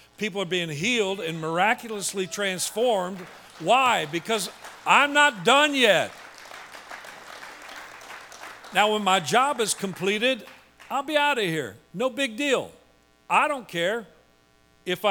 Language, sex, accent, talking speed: English, male, American, 125 wpm